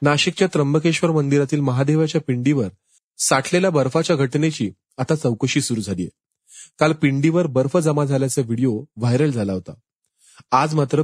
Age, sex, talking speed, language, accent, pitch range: 30-49, male, 110 wpm, Marathi, native, 115-155 Hz